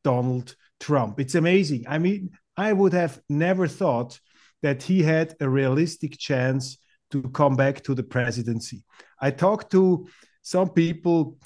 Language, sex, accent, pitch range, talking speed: German, male, German, 130-165 Hz, 145 wpm